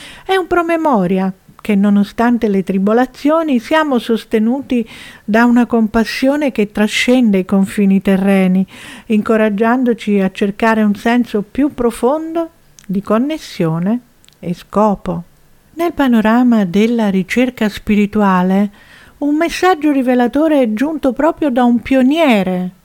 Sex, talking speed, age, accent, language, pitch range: female, 110 wpm, 50-69, native, Italian, 205-275 Hz